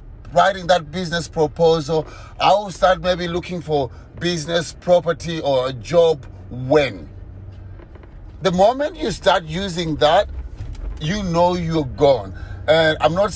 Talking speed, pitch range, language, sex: 130 wpm, 140-185 Hz, English, male